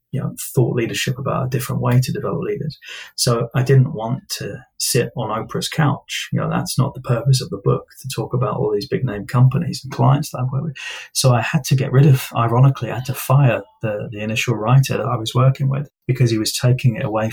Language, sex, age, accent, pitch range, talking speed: English, male, 20-39, British, 115-135 Hz, 235 wpm